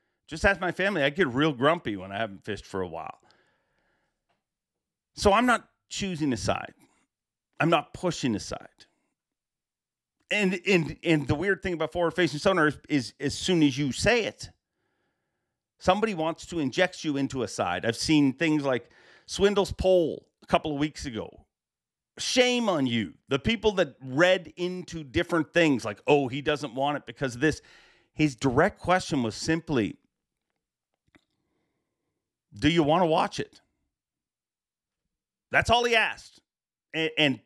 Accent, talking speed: American, 155 wpm